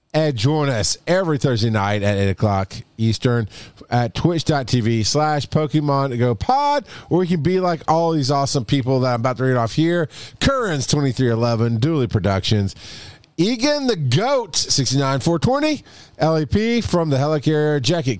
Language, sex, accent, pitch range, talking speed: English, male, American, 110-155 Hz, 150 wpm